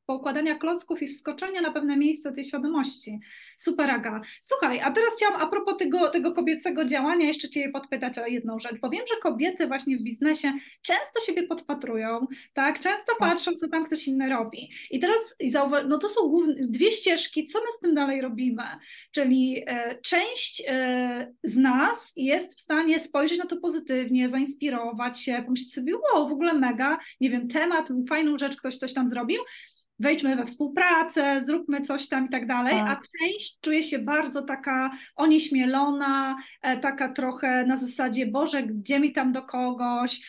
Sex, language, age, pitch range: female, Polish, 20-39, 260-320 Hz